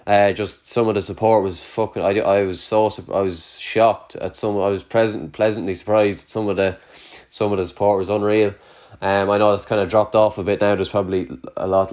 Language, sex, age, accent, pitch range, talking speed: English, male, 20-39, Irish, 95-110 Hz, 240 wpm